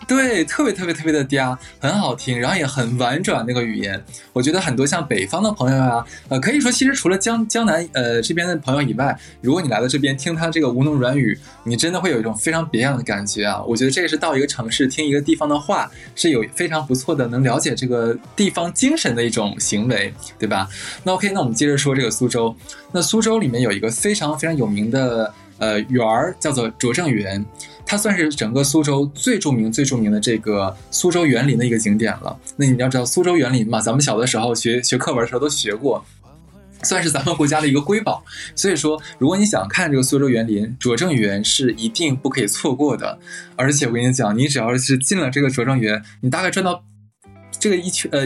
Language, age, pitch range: Chinese, 20-39, 115-160 Hz